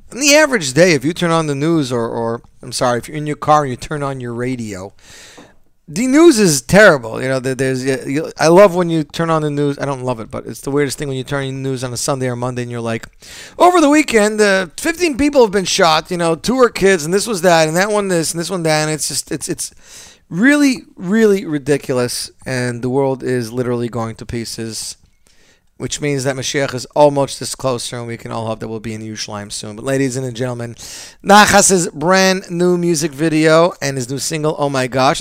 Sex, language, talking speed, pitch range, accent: male, English, 240 wpm, 125-185 Hz, American